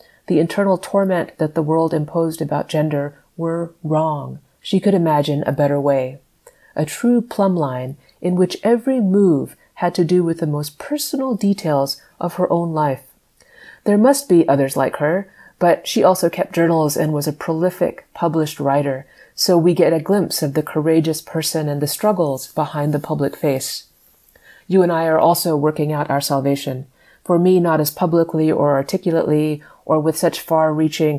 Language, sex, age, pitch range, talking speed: English, female, 30-49, 145-175 Hz, 175 wpm